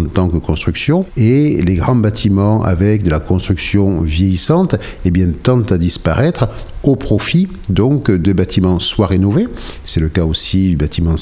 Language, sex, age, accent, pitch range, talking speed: French, male, 60-79, French, 90-115 Hz, 170 wpm